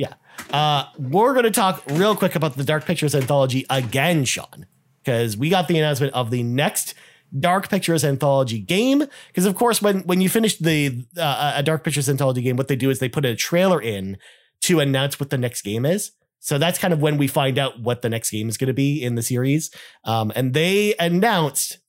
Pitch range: 130-175 Hz